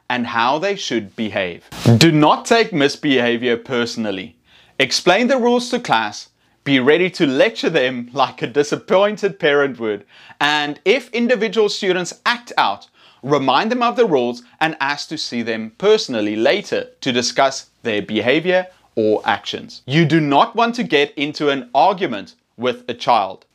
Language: English